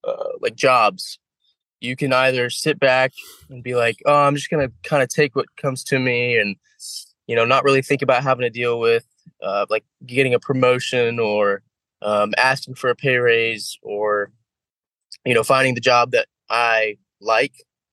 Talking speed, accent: 185 wpm, American